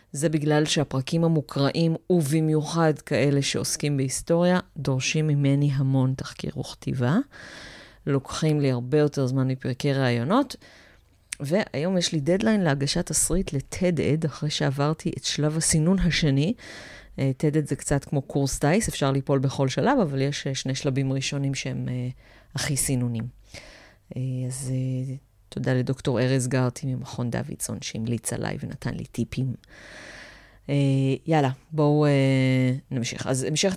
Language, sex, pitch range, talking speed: Hebrew, female, 130-155 Hz, 125 wpm